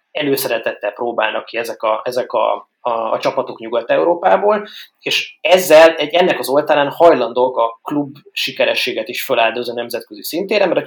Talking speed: 150 wpm